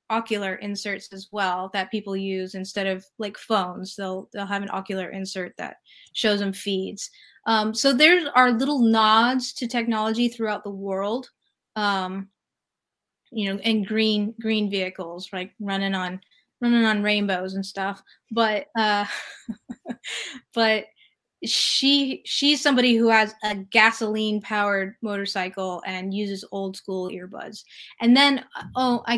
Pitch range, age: 195-225 Hz, 20-39